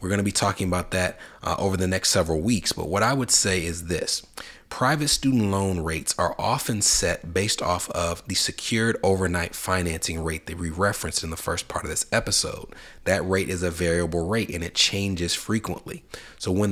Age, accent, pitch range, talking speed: 30-49, American, 85-105 Hz, 200 wpm